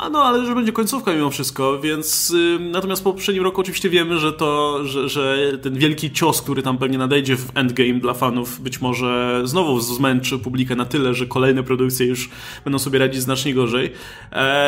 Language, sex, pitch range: Polish, male, 130-170 Hz